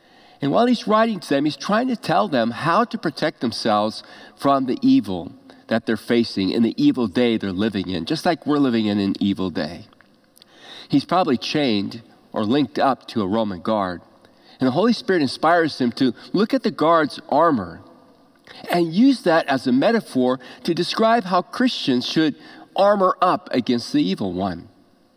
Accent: American